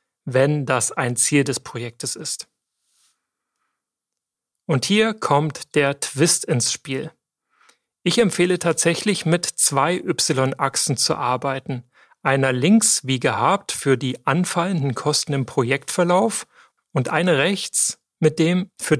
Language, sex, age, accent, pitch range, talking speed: German, male, 40-59, German, 135-175 Hz, 120 wpm